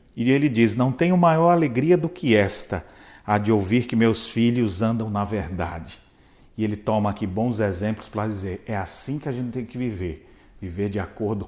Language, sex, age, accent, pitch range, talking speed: Portuguese, male, 40-59, Brazilian, 105-150 Hz, 200 wpm